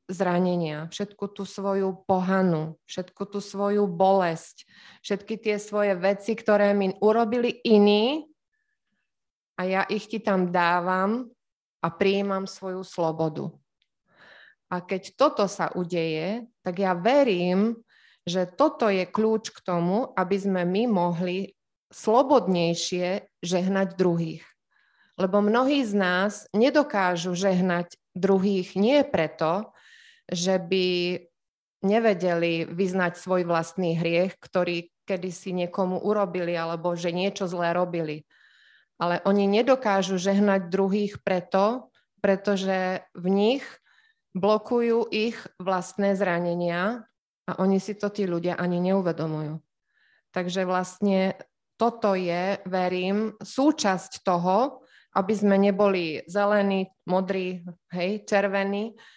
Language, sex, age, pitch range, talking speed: Slovak, female, 20-39, 180-210 Hz, 110 wpm